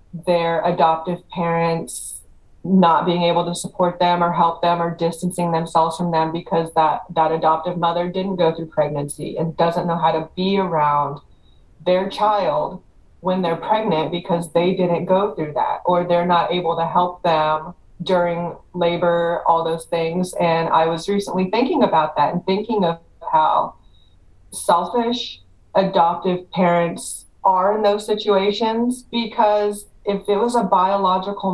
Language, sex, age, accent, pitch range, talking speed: English, female, 30-49, American, 160-190 Hz, 150 wpm